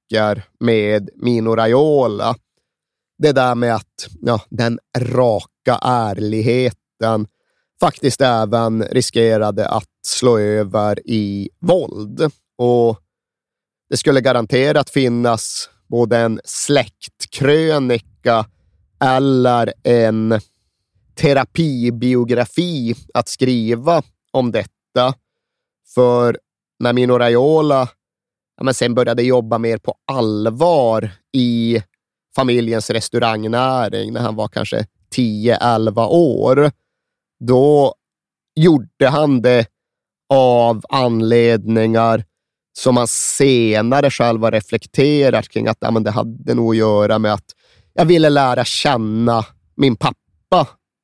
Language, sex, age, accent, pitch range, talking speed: Swedish, male, 30-49, native, 110-130 Hz, 95 wpm